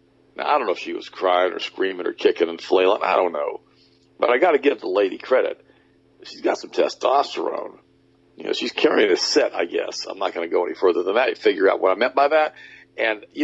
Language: English